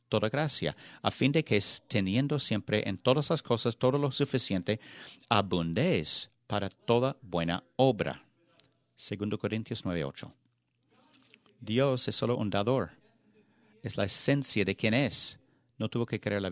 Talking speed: 145 wpm